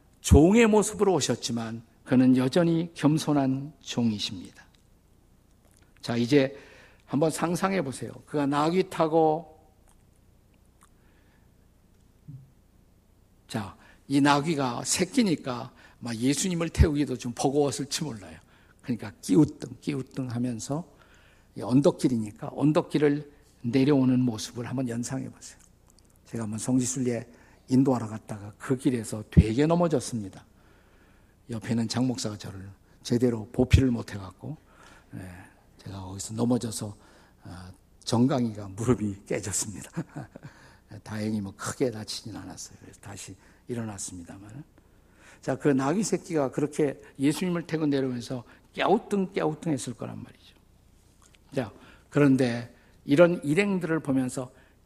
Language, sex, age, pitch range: Korean, male, 50-69, 100-145 Hz